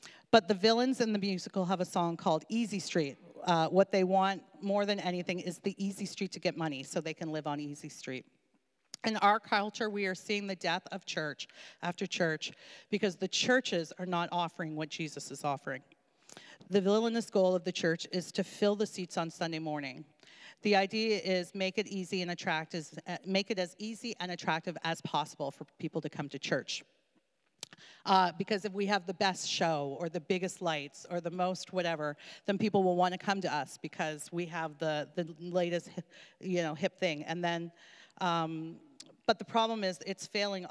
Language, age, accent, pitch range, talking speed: English, 40-59, American, 160-195 Hz, 195 wpm